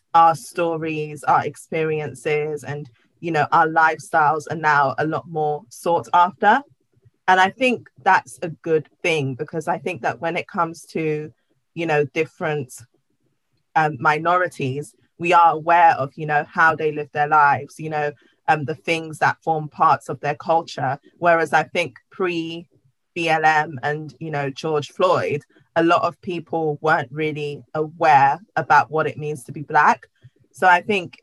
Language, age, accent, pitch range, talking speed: English, 20-39, British, 150-170 Hz, 160 wpm